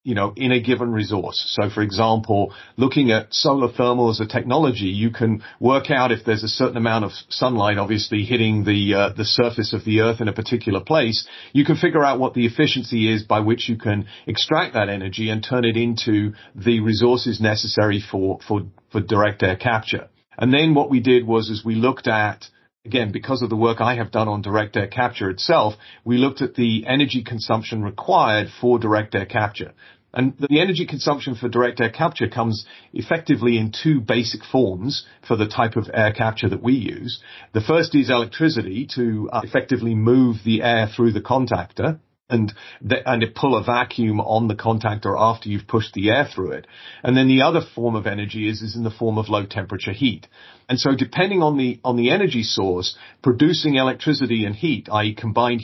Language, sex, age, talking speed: English, male, 40-59, 200 wpm